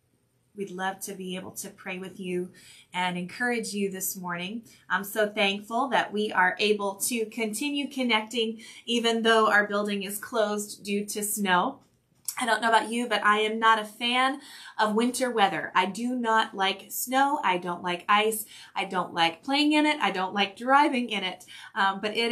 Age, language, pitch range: 20-39, English, 195-245 Hz